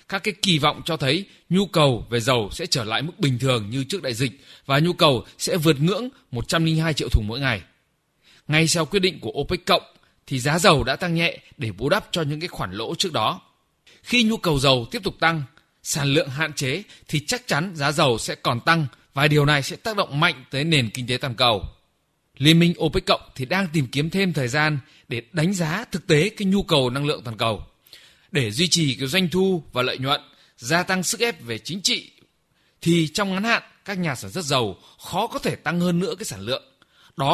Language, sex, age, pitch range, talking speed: Vietnamese, male, 20-39, 135-180 Hz, 230 wpm